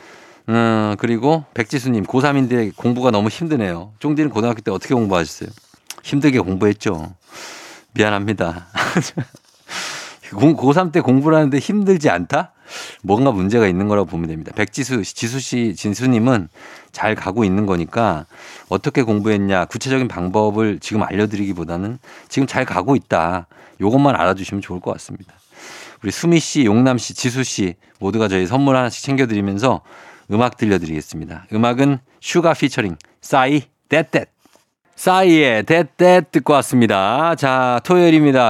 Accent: native